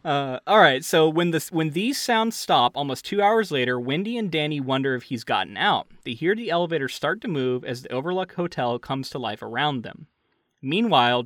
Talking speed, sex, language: 210 wpm, male, English